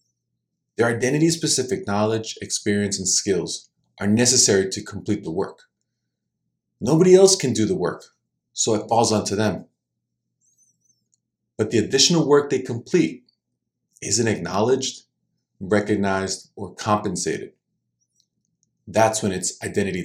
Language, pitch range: English, 100-135 Hz